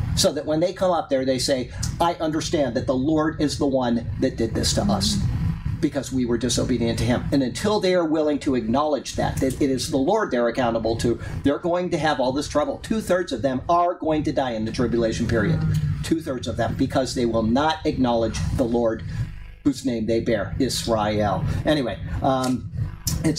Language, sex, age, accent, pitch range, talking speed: English, male, 50-69, American, 130-180 Hz, 210 wpm